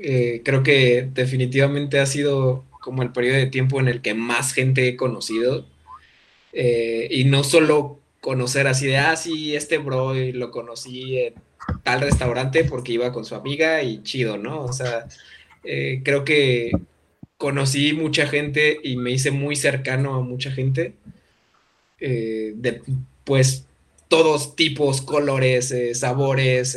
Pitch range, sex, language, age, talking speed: 120-140 Hz, male, Spanish, 20-39, 150 wpm